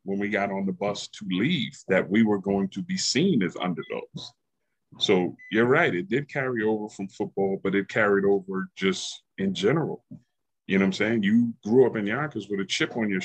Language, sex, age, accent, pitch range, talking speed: English, male, 30-49, American, 95-125 Hz, 215 wpm